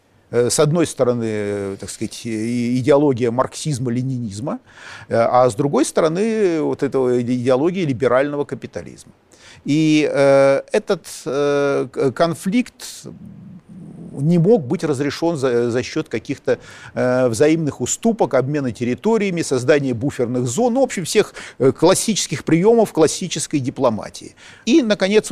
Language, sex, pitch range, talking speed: Russian, male, 120-160 Hz, 110 wpm